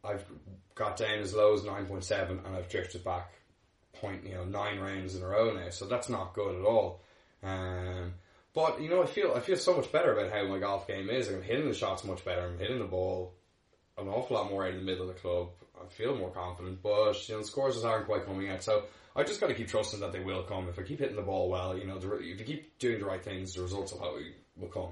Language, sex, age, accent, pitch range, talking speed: English, male, 10-29, Irish, 90-105 Hz, 270 wpm